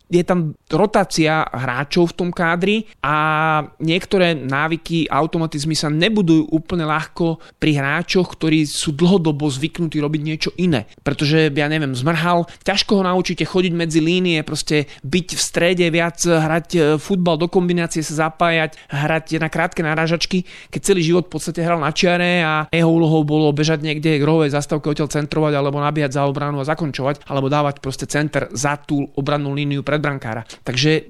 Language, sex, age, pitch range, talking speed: Slovak, male, 30-49, 150-175 Hz, 160 wpm